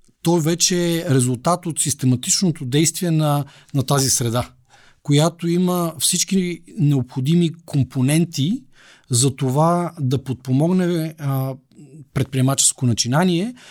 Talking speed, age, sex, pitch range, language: 100 wpm, 40-59, male, 130-165 Hz, Bulgarian